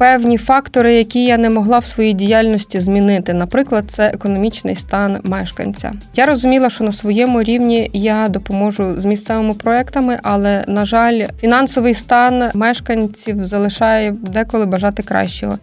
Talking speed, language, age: 140 wpm, Ukrainian, 20-39